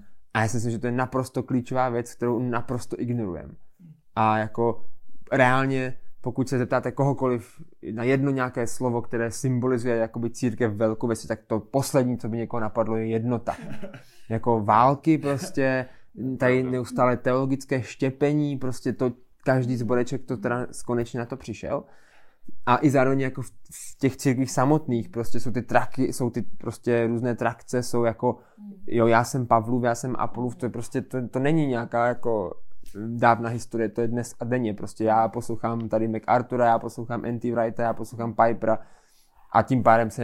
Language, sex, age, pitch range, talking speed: Czech, male, 20-39, 115-130 Hz, 165 wpm